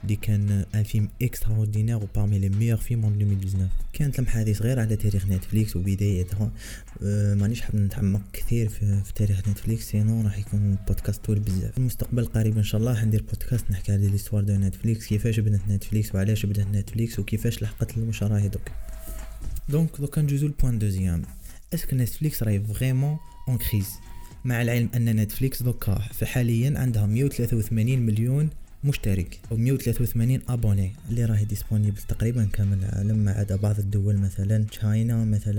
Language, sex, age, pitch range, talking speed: Arabic, male, 20-39, 105-120 Hz, 140 wpm